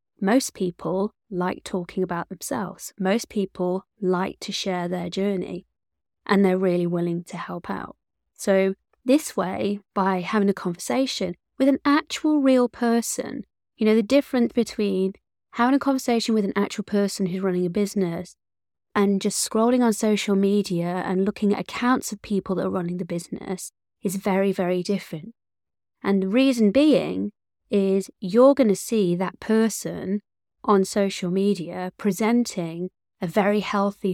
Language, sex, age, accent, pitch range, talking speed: English, female, 20-39, British, 185-225 Hz, 155 wpm